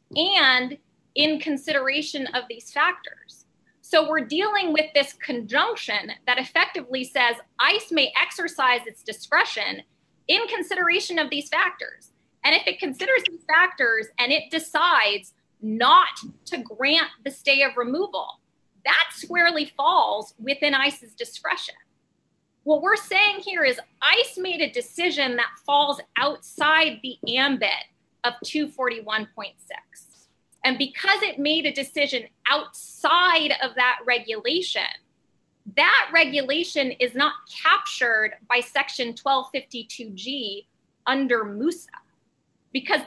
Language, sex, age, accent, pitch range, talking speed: English, female, 20-39, American, 250-330 Hz, 115 wpm